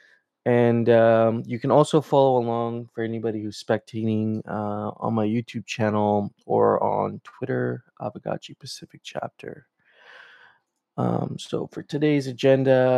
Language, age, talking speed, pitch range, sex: English, 20-39, 125 wpm, 110-125 Hz, male